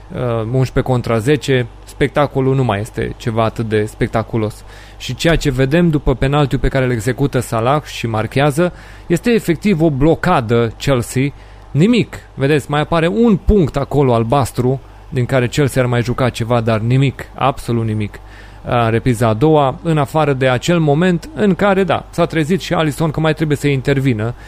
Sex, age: male, 30-49